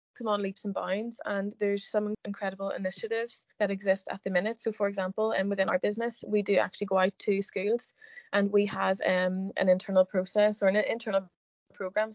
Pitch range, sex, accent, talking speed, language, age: 190-215 Hz, female, Irish, 200 wpm, English, 20-39